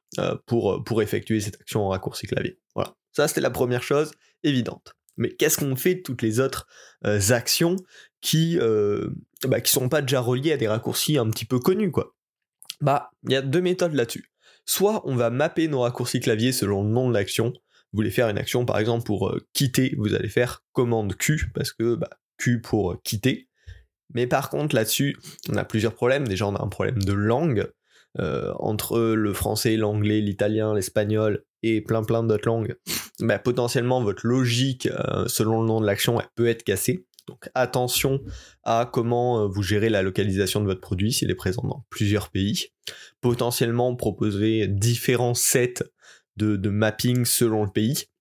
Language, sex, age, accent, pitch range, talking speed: French, male, 20-39, French, 105-130 Hz, 185 wpm